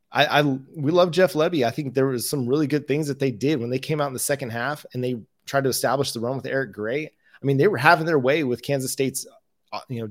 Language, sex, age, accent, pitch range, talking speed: English, male, 30-49, American, 120-145 Hz, 280 wpm